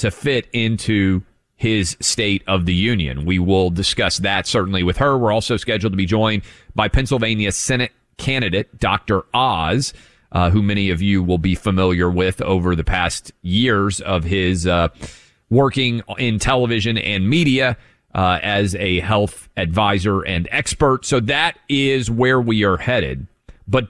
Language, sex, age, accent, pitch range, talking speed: English, male, 30-49, American, 100-135 Hz, 160 wpm